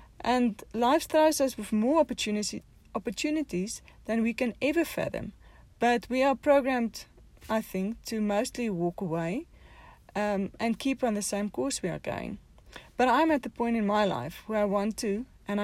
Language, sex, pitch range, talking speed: English, female, 190-235 Hz, 175 wpm